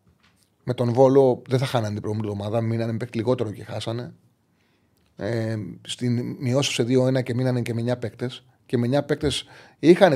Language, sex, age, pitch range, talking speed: Greek, male, 30-49, 115-145 Hz, 170 wpm